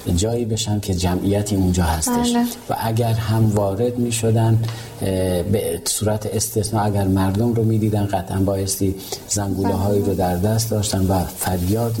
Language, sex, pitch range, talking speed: Persian, male, 100-115 Hz, 150 wpm